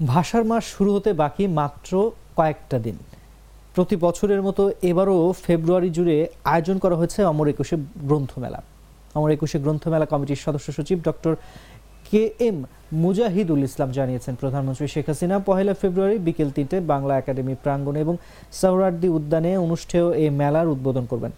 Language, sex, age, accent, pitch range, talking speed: English, male, 30-49, Indian, 140-180 Hz, 110 wpm